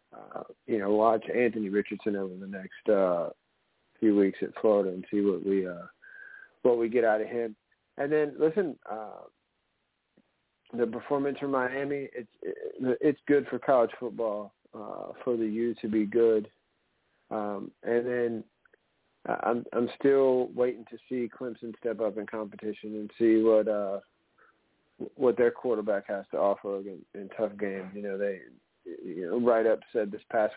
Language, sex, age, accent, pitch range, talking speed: English, male, 40-59, American, 110-130 Hz, 165 wpm